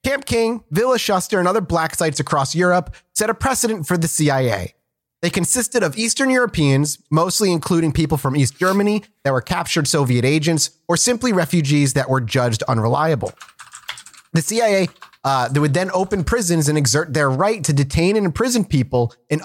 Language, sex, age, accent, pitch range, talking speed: English, male, 30-49, American, 135-195 Hz, 175 wpm